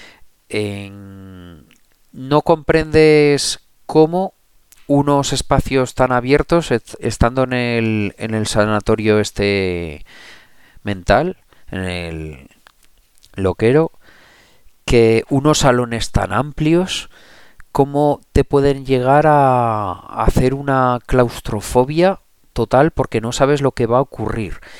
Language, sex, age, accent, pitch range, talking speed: Spanish, male, 40-59, Spanish, 105-140 Hz, 95 wpm